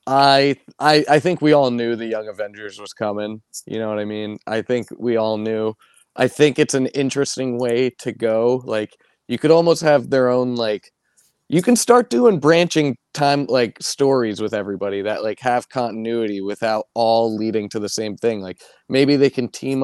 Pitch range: 105-135 Hz